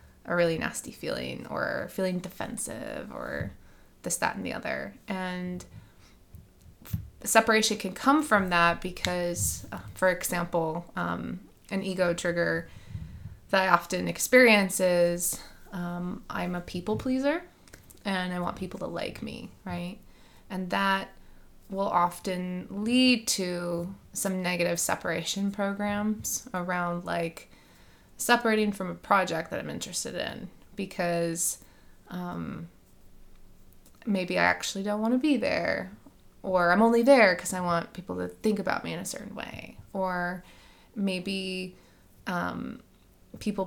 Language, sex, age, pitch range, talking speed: English, female, 20-39, 170-200 Hz, 130 wpm